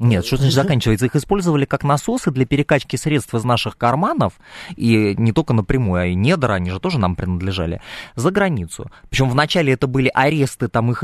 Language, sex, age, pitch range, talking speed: Russian, male, 20-39, 105-155 Hz, 190 wpm